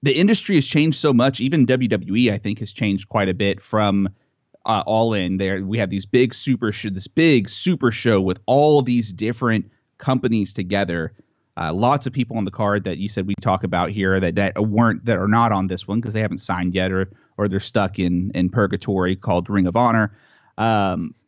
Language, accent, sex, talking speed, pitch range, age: English, American, male, 215 wpm, 95-125 Hz, 30-49